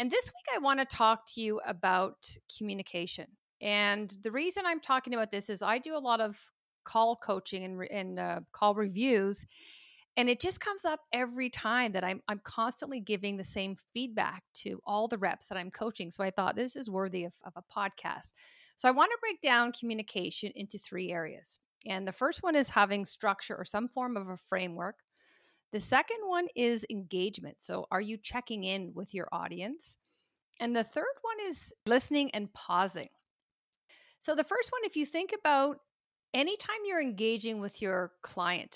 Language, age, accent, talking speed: English, 40-59, American, 185 wpm